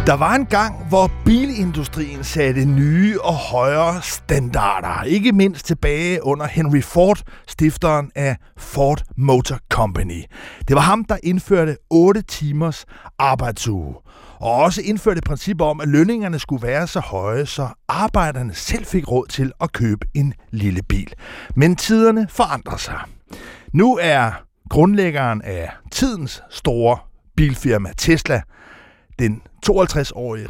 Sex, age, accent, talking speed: male, 60-79, native, 130 wpm